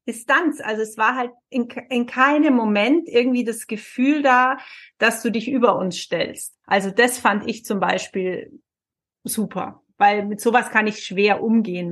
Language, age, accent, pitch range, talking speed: German, 30-49, German, 200-245 Hz, 165 wpm